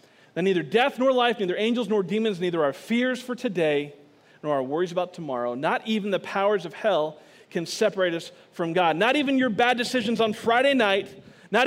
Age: 40-59